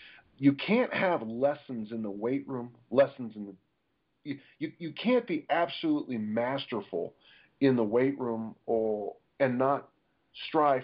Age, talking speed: 50-69, 145 wpm